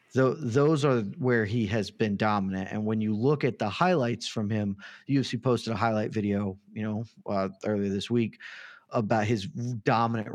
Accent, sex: American, male